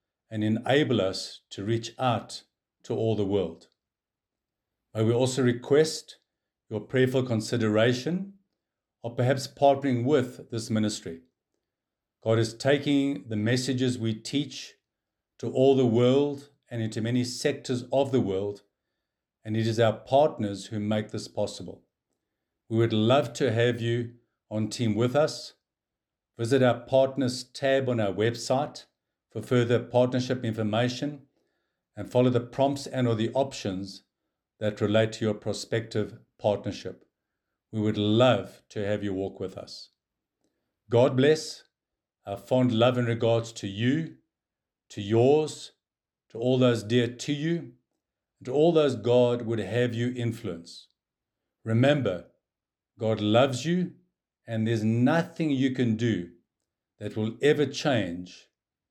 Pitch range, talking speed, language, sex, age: 110-130 Hz, 135 wpm, English, male, 50-69